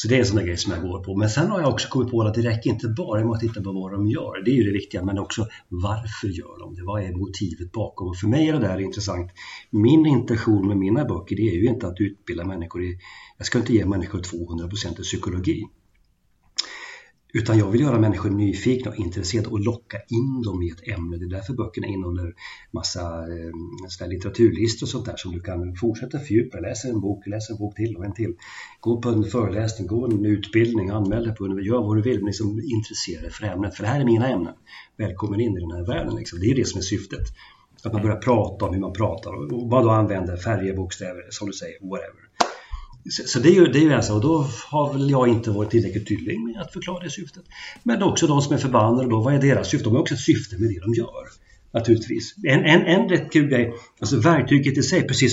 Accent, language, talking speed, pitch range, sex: Swedish, English, 240 wpm, 100-125 Hz, male